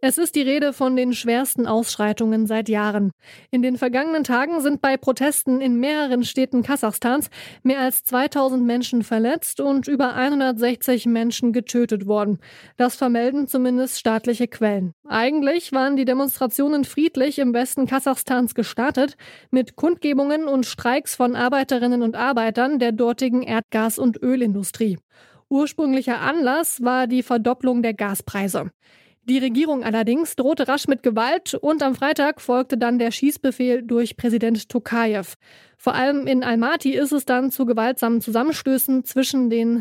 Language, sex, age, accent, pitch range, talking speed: German, female, 20-39, German, 235-275 Hz, 145 wpm